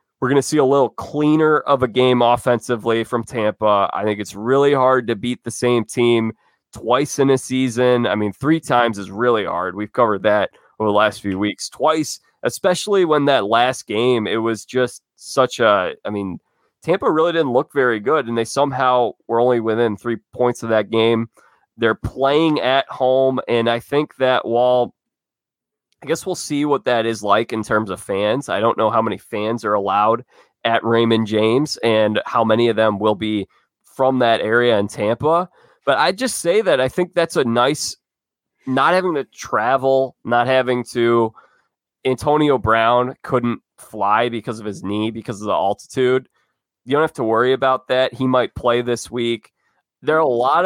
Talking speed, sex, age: 190 wpm, male, 20-39